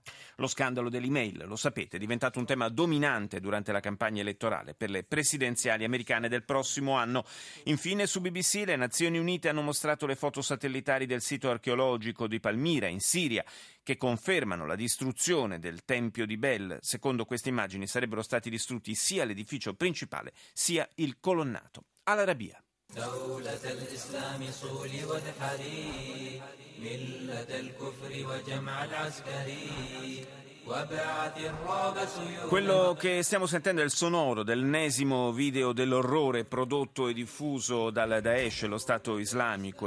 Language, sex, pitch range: Italian, male, 110-145 Hz